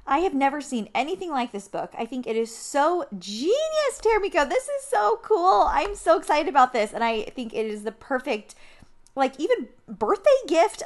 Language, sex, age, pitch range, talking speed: English, female, 20-39, 225-320 Hz, 195 wpm